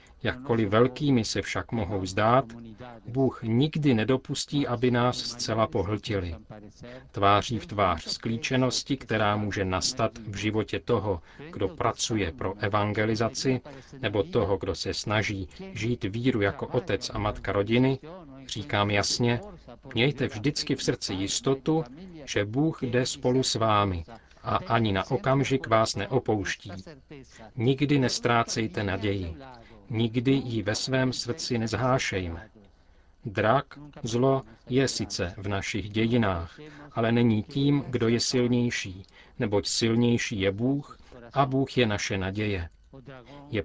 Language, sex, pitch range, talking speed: Czech, male, 100-130 Hz, 125 wpm